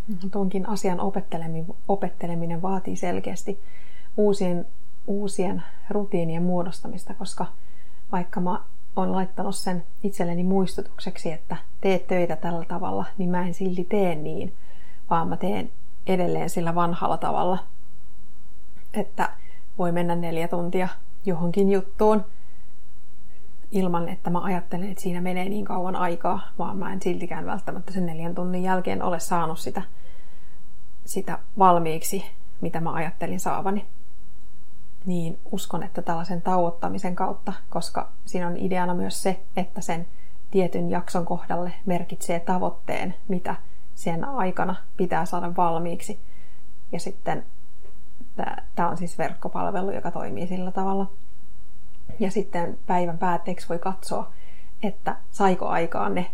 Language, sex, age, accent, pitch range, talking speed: Finnish, female, 30-49, native, 170-190 Hz, 125 wpm